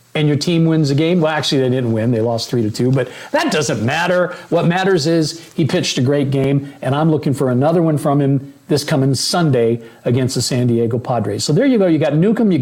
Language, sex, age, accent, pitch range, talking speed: English, male, 50-69, American, 125-160 Hz, 245 wpm